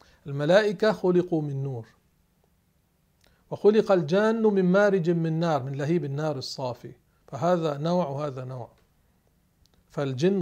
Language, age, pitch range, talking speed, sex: Arabic, 40-59, 145-190 Hz, 110 wpm, male